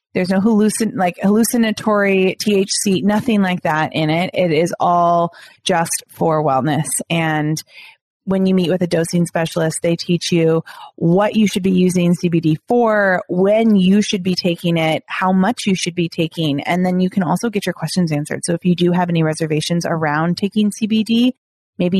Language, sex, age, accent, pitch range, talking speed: English, female, 30-49, American, 165-200 Hz, 185 wpm